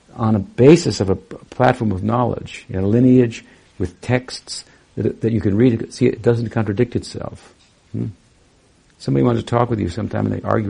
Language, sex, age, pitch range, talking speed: English, male, 60-79, 95-115 Hz, 195 wpm